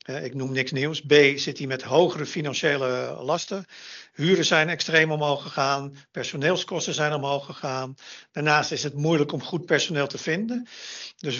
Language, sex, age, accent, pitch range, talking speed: Dutch, male, 50-69, Dutch, 140-160 Hz, 160 wpm